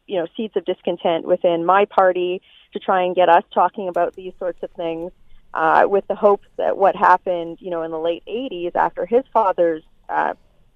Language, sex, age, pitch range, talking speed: English, female, 30-49, 175-215 Hz, 200 wpm